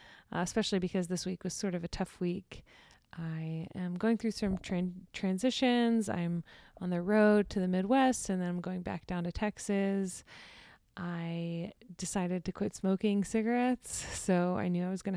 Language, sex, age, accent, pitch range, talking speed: English, female, 20-39, American, 180-210 Hz, 175 wpm